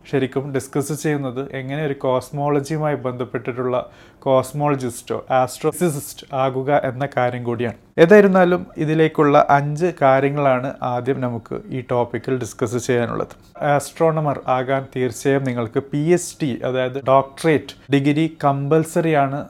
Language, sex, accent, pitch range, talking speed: Malayalam, male, native, 125-150 Hz, 95 wpm